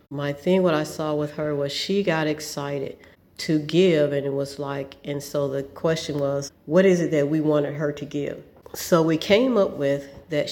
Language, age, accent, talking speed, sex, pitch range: English, 40-59, American, 210 wpm, female, 145-155 Hz